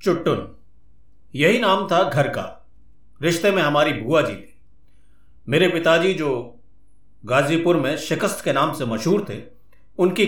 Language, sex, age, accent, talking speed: Hindi, male, 50-69, native, 140 wpm